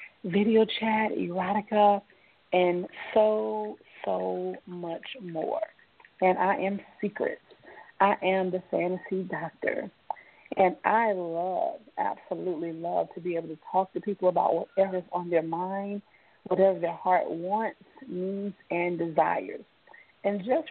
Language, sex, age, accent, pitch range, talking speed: English, female, 40-59, American, 180-220 Hz, 125 wpm